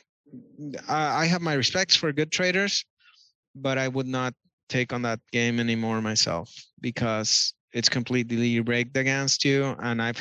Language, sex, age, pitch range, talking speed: Polish, male, 30-49, 120-160 Hz, 145 wpm